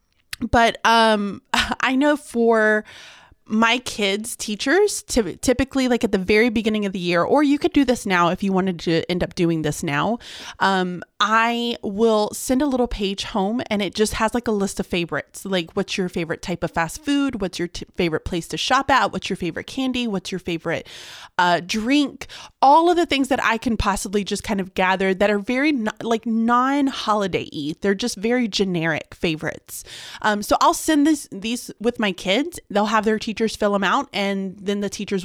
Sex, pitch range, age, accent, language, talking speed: female, 180-245 Hz, 30-49, American, English, 205 wpm